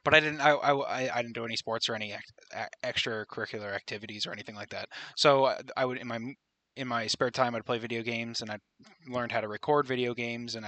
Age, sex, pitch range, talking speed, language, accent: 20-39, male, 115-130 Hz, 225 wpm, English, American